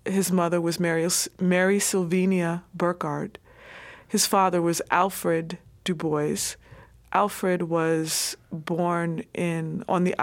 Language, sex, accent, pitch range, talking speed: English, female, American, 165-195 Hz, 105 wpm